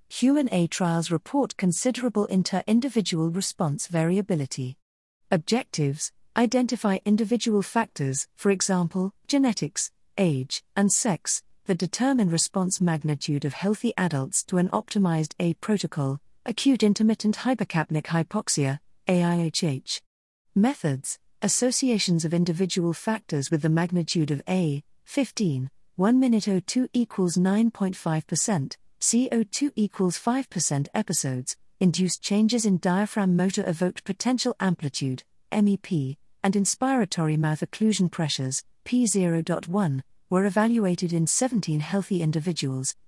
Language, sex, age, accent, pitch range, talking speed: English, female, 40-59, British, 160-215 Hz, 105 wpm